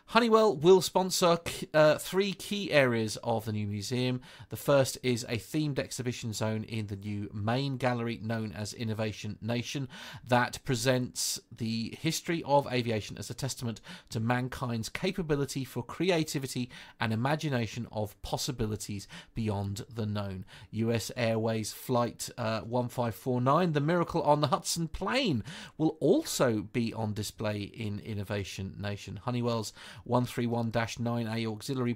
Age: 30-49